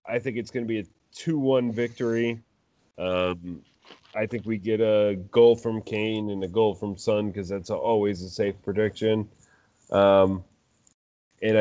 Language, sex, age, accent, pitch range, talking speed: English, male, 30-49, American, 100-115 Hz, 160 wpm